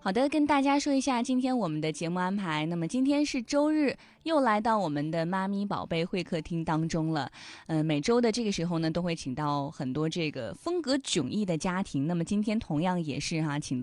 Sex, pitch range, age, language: female, 150-210 Hz, 20-39, Chinese